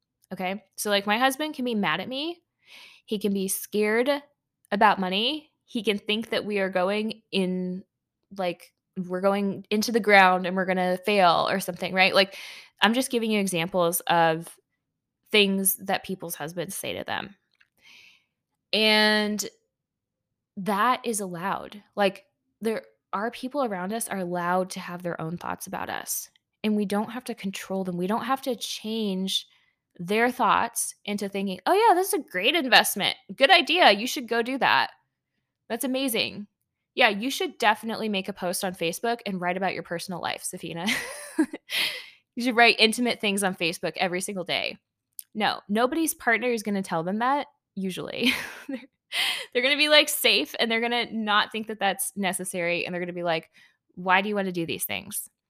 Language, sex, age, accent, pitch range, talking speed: English, female, 10-29, American, 185-240 Hz, 180 wpm